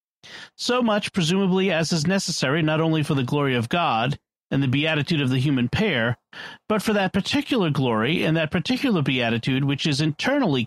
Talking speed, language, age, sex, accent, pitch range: 180 wpm, English, 40-59, male, American, 140-200 Hz